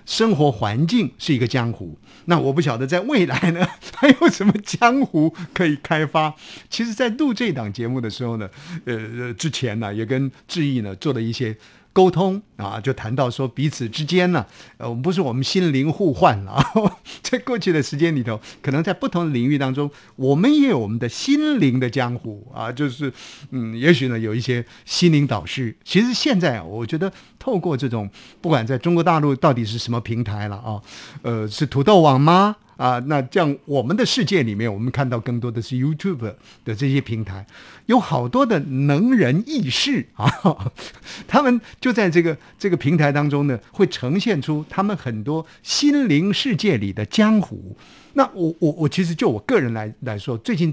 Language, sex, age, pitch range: Chinese, male, 50-69, 120-185 Hz